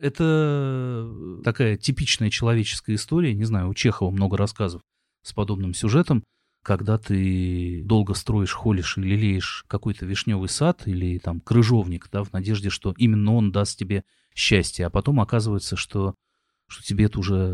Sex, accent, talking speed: male, native, 150 wpm